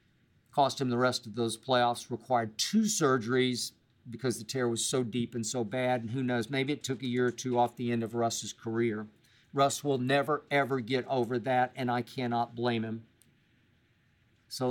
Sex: male